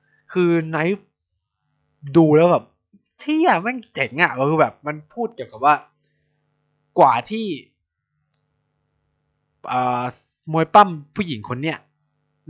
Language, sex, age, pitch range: Thai, male, 20-39, 115-150 Hz